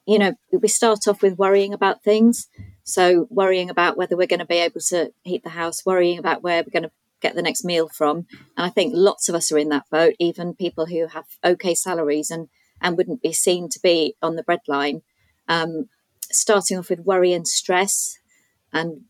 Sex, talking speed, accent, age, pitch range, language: female, 205 wpm, British, 30-49, 160-190 Hz, English